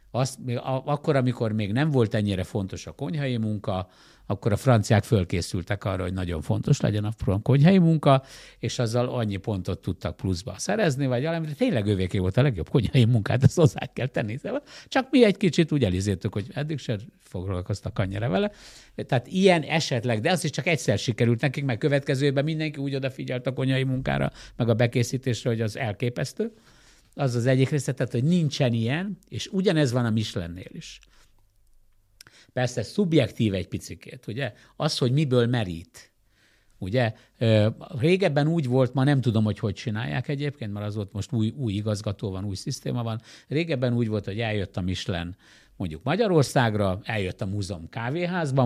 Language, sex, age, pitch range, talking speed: Hungarian, male, 60-79, 105-140 Hz, 170 wpm